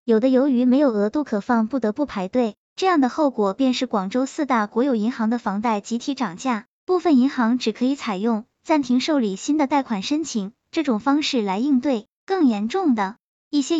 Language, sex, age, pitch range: Chinese, male, 10-29, 220-290 Hz